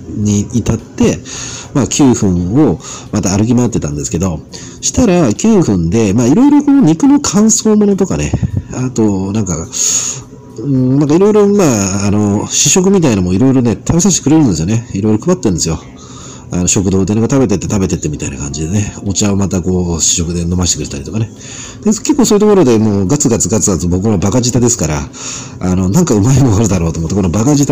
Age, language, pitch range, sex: 40-59, Japanese, 95-135 Hz, male